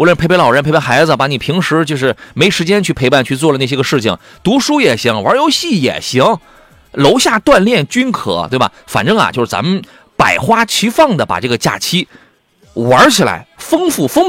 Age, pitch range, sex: 30-49, 130-205 Hz, male